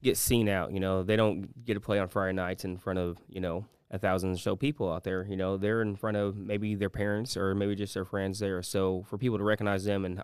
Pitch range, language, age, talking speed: 95-115 Hz, English, 20-39, 275 wpm